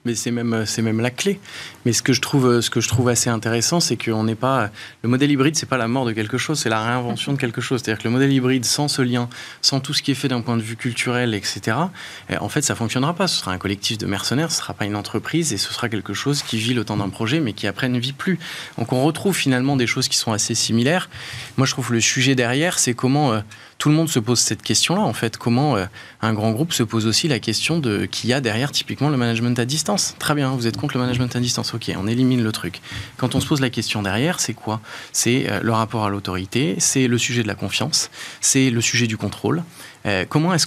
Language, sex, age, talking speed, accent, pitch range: French, male, 20-39, 265 wpm, French, 115-140 Hz